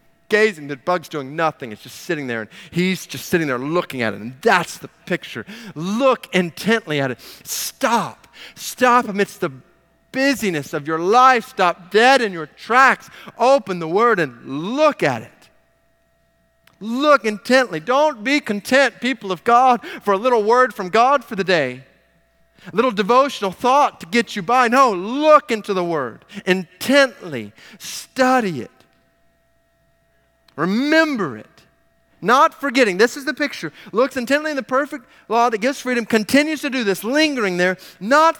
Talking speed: 160 wpm